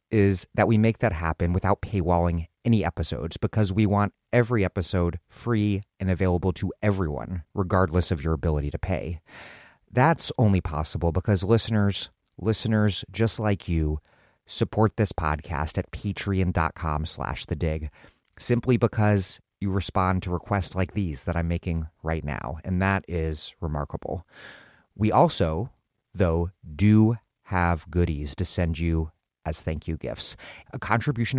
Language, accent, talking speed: English, American, 145 wpm